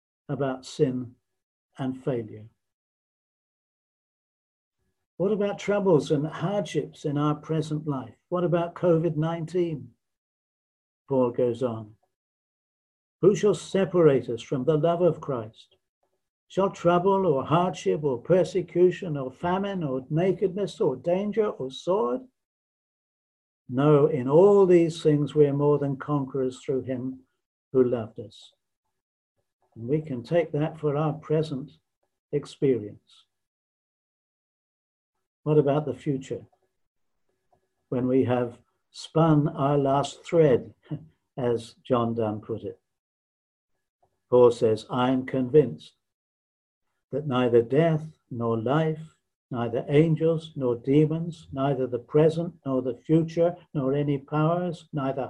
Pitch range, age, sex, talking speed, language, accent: 125-165 Hz, 60-79, male, 115 wpm, English, British